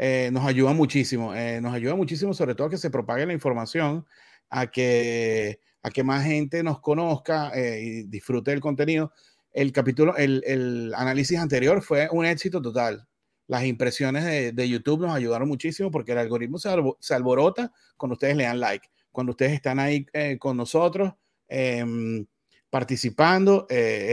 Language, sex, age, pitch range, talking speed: Spanish, male, 30-49, 120-150 Hz, 165 wpm